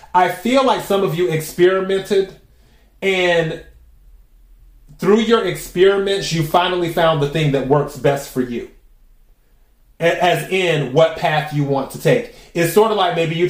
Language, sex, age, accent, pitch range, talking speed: English, male, 30-49, American, 140-175 Hz, 155 wpm